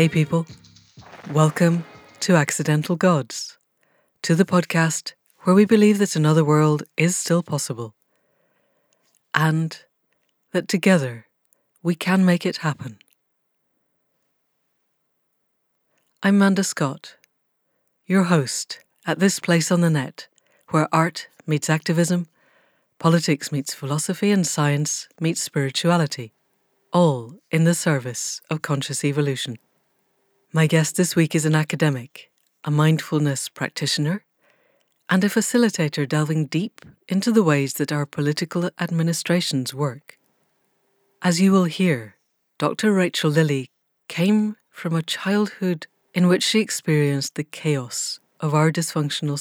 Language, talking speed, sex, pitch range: English, 120 wpm, female, 145-180 Hz